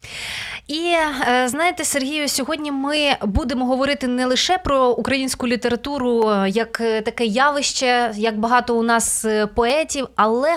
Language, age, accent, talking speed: Ukrainian, 20-39, native, 120 wpm